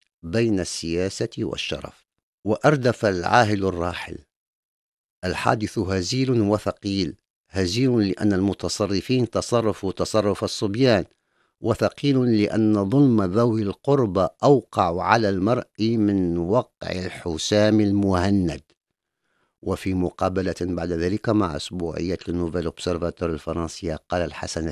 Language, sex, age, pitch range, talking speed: Arabic, male, 50-69, 85-105 Hz, 90 wpm